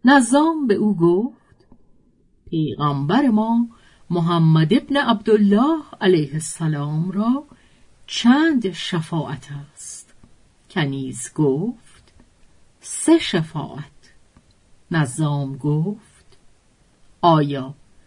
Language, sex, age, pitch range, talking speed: Persian, female, 50-69, 150-235 Hz, 75 wpm